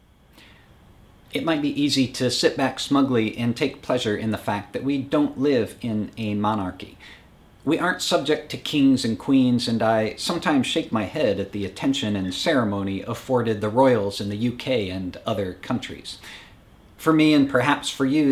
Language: English